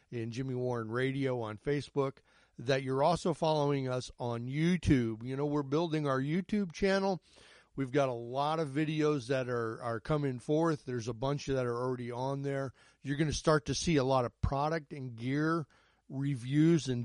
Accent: American